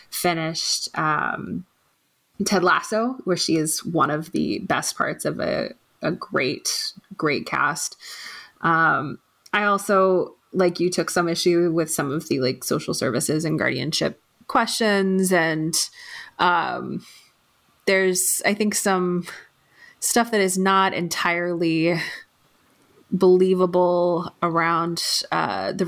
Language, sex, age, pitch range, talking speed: English, female, 20-39, 170-205 Hz, 120 wpm